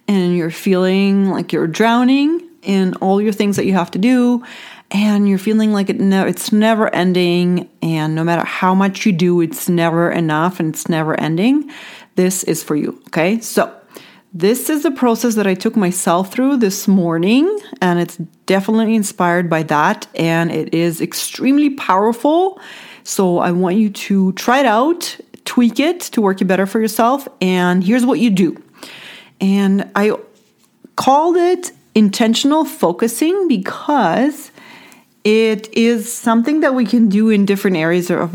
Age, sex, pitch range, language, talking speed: 30-49, female, 180-245 Hz, English, 160 wpm